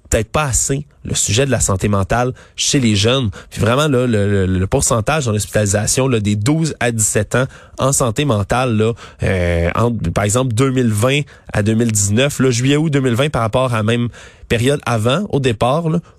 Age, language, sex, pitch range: 20-39, French, male, 105-135 Hz